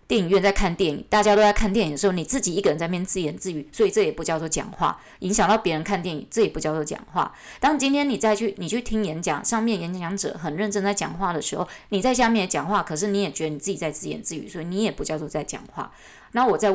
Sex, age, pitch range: female, 20-39, 160-215 Hz